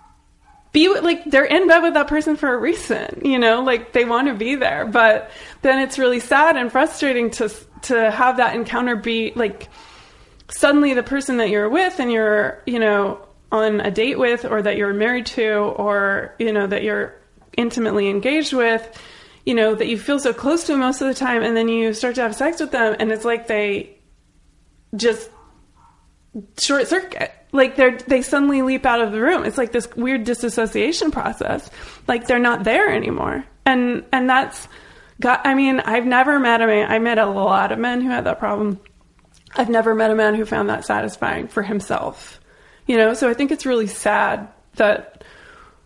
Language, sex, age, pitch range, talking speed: English, female, 20-39, 215-265 Hz, 195 wpm